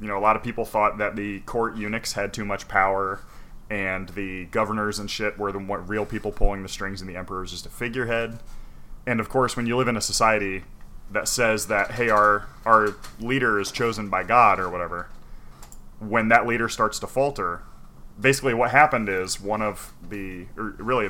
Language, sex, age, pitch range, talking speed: English, male, 30-49, 95-115 Hz, 200 wpm